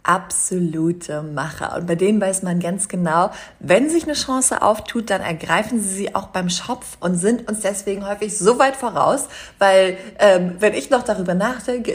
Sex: female